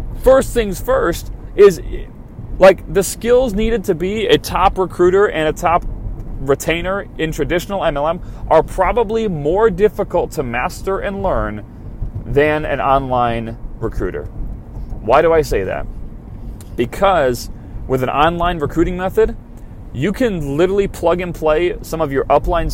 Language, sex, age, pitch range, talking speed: English, male, 30-49, 115-175 Hz, 140 wpm